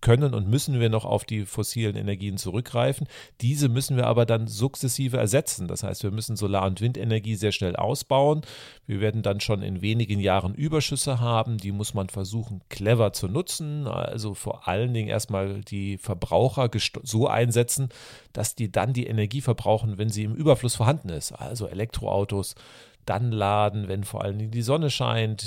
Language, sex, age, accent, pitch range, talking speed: German, male, 40-59, German, 105-125 Hz, 175 wpm